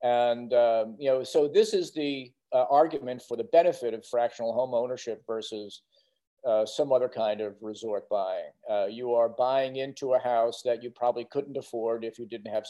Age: 50-69